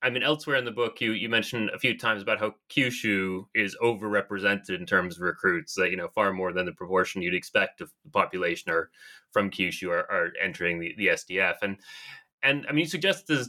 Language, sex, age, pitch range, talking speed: English, male, 20-39, 95-120 Hz, 220 wpm